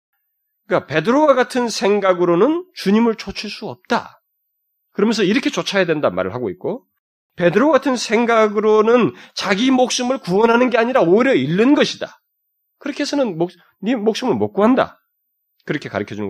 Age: 30-49